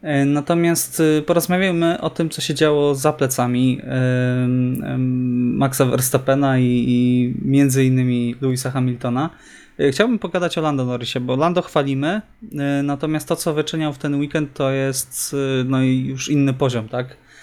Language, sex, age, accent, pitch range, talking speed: Polish, male, 20-39, native, 130-150 Hz, 130 wpm